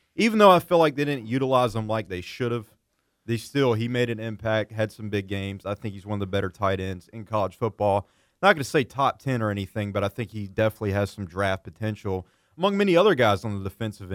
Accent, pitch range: American, 100-120 Hz